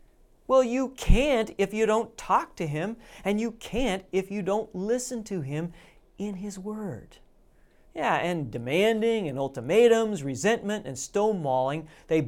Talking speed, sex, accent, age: 145 wpm, male, American, 40-59